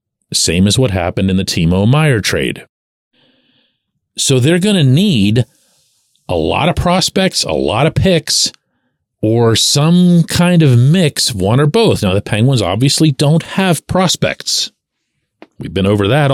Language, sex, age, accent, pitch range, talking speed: English, male, 40-59, American, 115-165 Hz, 150 wpm